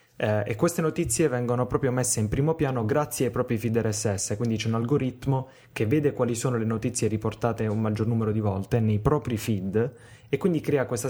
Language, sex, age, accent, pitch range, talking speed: Italian, male, 20-39, native, 105-125 Hz, 205 wpm